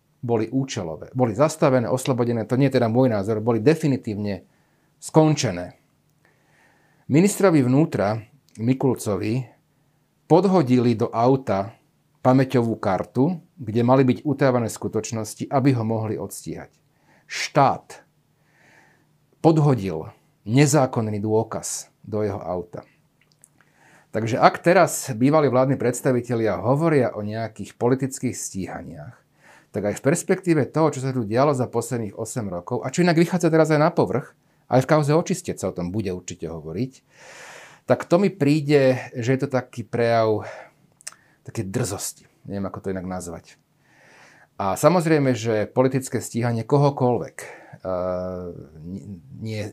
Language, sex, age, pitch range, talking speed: Slovak, male, 40-59, 105-145 Hz, 125 wpm